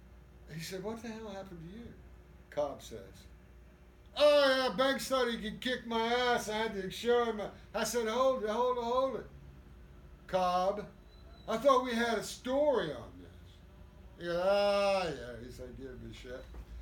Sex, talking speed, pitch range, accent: male, 180 wpm, 150-240 Hz, American